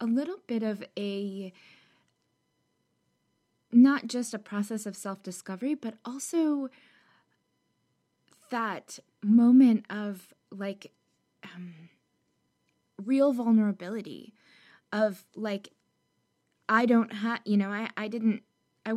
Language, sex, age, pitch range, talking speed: English, female, 20-39, 195-235 Hz, 100 wpm